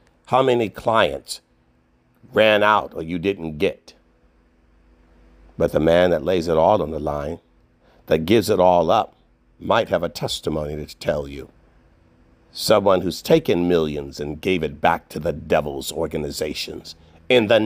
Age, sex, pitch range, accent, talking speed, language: 50-69, male, 80-110 Hz, American, 155 wpm, English